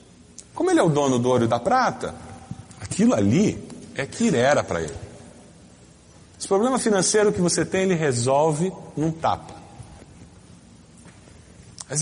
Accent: Brazilian